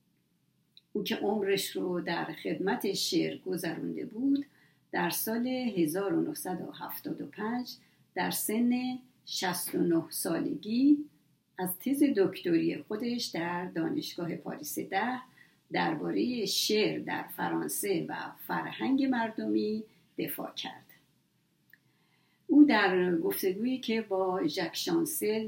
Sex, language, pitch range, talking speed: female, Persian, 185-290 Hz, 95 wpm